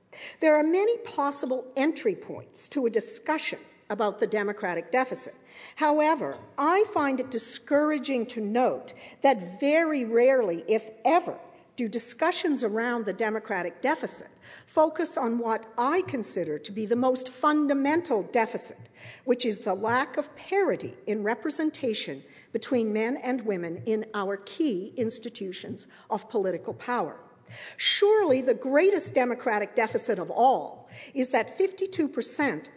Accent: American